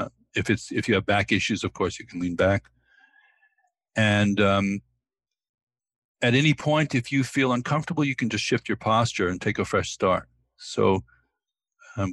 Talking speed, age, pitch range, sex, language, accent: 175 wpm, 60-79, 95-125 Hz, male, English, American